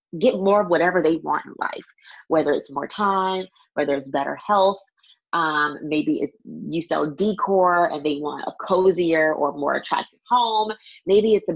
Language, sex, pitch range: English, female, 150-195 Hz